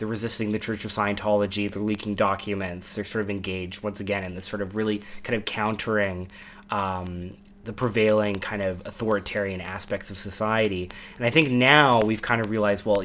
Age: 20-39